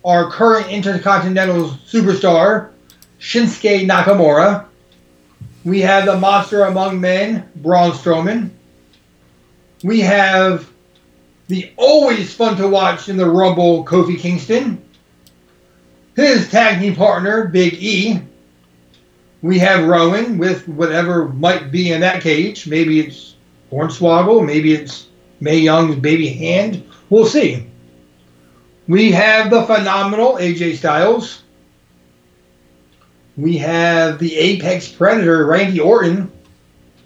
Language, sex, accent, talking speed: English, male, American, 105 wpm